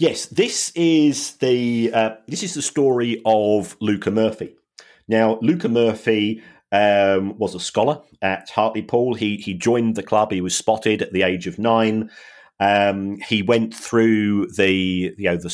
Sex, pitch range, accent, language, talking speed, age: male, 95-120 Hz, British, English, 165 wpm, 40-59